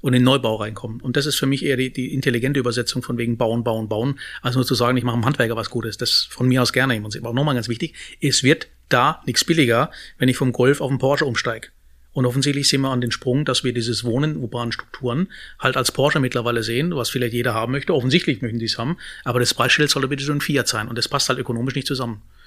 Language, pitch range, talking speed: German, 120-140 Hz, 265 wpm